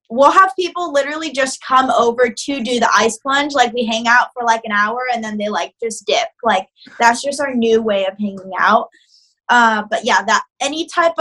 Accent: American